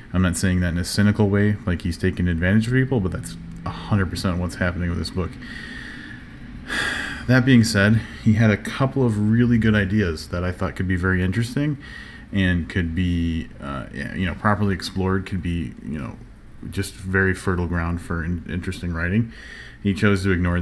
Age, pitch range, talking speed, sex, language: 30-49, 85-100 Hz, 185 wpm, male, English